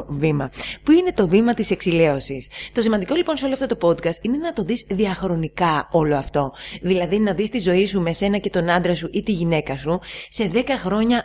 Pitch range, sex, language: 175-235 Hz, female, Greek